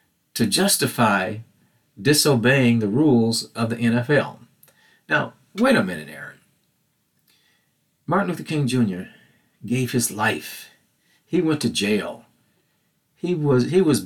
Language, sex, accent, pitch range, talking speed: English, male, American, 115-145 Hz, 120 wpm